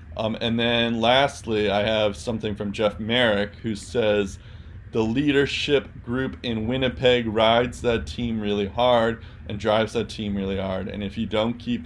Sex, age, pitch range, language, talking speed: male, 20-39, 100-120 Hz, English, 165 wpm